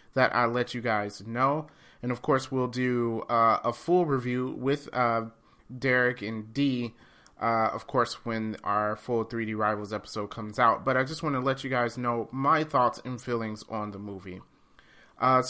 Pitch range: 110-135 Hz